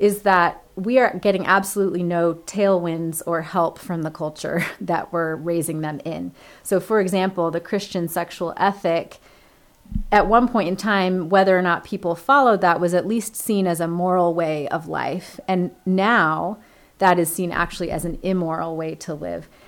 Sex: female